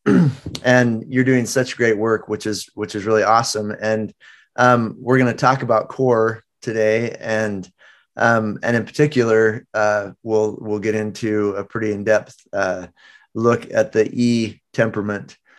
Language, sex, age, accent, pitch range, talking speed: English, male, 30-49, American, 110-120 Hz, 150 wpm